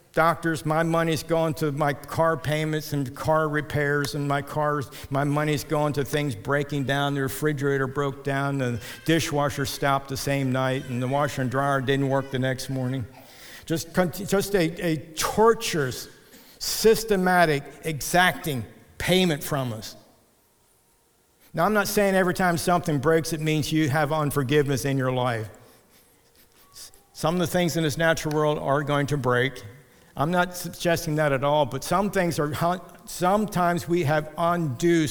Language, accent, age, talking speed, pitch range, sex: English, American, 50-69, 160 wpm, 135-165 Hz, male